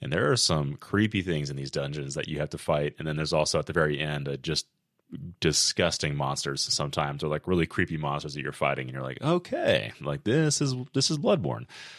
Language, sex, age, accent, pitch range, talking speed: English, male, 30-49, American, 75-95 Hz, 225 wpm